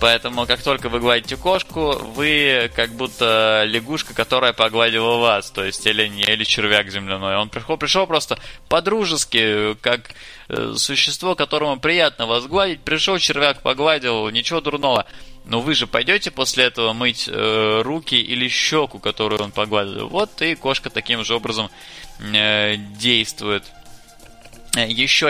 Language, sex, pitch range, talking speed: Russian, male, 110-140 Hz, 140 wpm